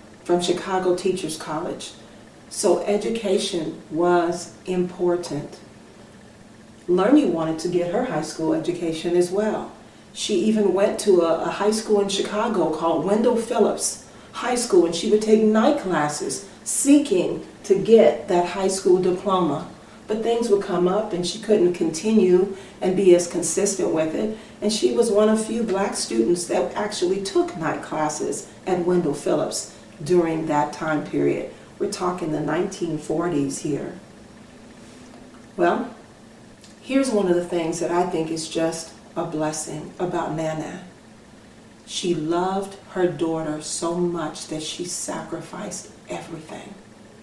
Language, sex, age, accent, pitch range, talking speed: English, female, 40-59, American, 170-210 Hz, 140 wpm